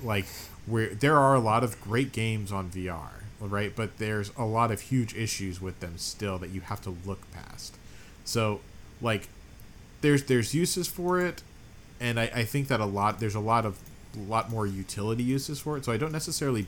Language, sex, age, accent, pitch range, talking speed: English, male, 40-59, American, 90-115 Hz, 205 wpm